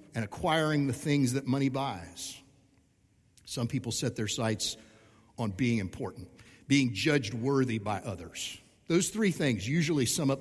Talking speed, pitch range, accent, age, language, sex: 150 wpm, 115-165 Hz, American, 50-69, English, male